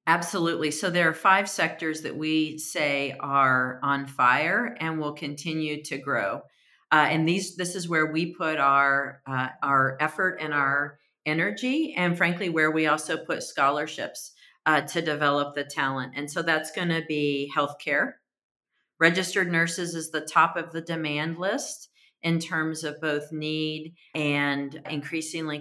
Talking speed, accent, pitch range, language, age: 155 wpm, American, 150-175 Hz, English, 40-59